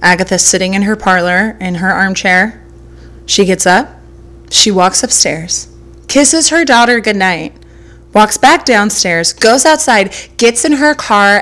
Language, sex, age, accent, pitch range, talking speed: English, female, 20-39, American, 180-230 Hz, 140 wpm